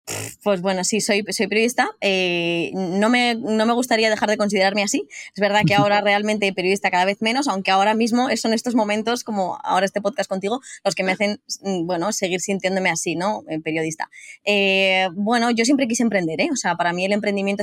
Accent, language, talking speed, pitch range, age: Spanish, Spanish, 205 wpm, 185-215 Hz, 20-39